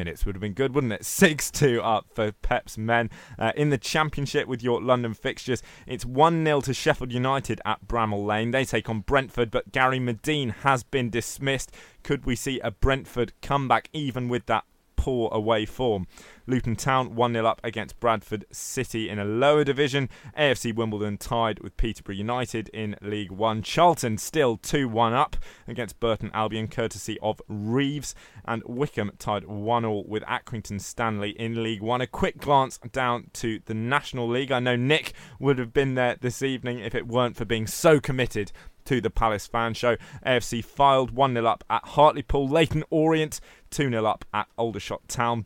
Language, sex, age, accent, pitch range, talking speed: English, male, 20-39, British, 110-135 Hz, 175 wpm